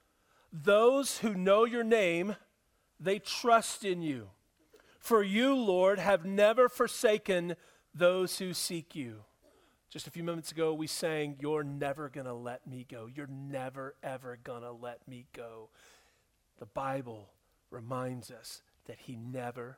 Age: 40-59